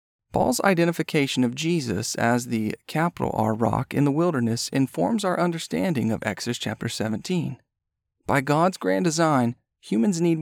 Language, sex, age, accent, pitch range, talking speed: English, male, 40-59, American, 115-165 Hz, 145 wpm